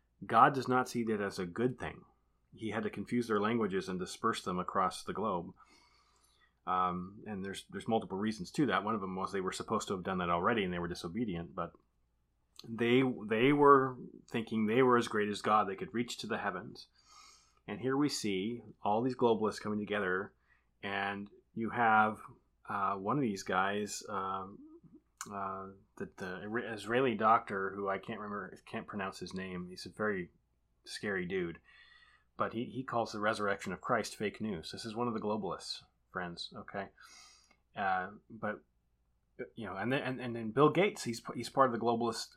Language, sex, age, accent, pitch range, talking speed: English, male, 30-49, American, 95-120 Hz, 190 wpm